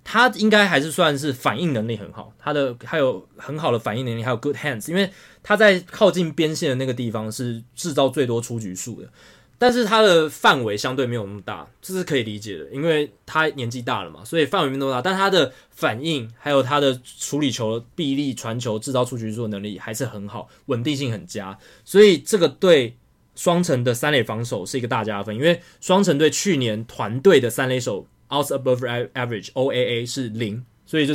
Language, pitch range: Chinese, 115-150 Hz